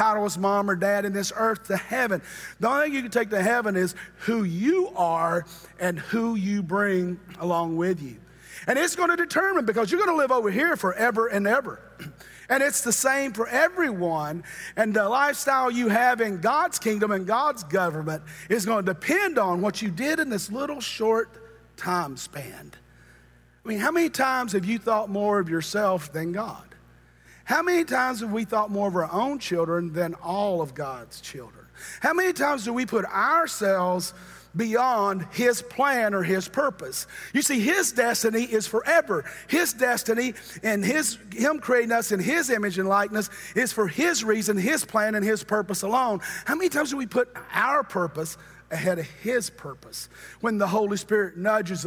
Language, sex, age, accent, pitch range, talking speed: English, male, 40-59, American, 185-250 Hz, 185 wpm